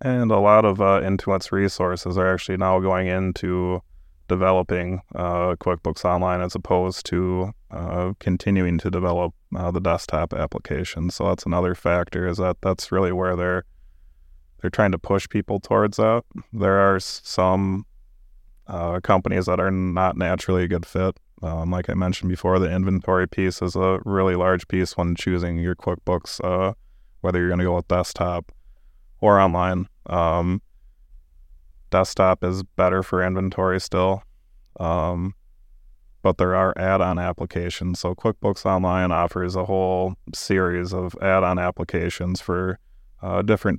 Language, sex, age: English, male, 20-39